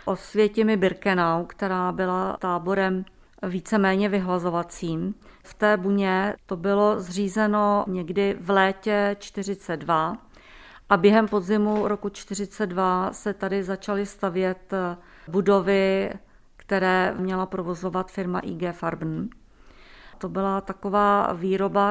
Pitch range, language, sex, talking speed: 185-205 Hz, Czech, female, 100 wpm